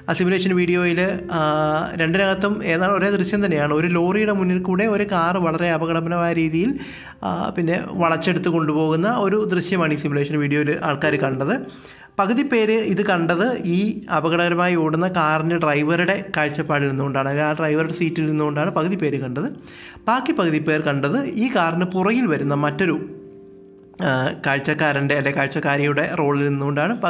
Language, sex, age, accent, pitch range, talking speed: Malayalam, male, 20-39, native, 145-180 Hz, 130 wpm